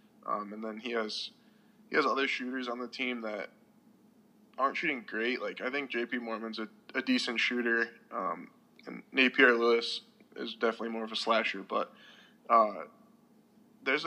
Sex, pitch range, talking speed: male, 115-160 Hz, 160 wpm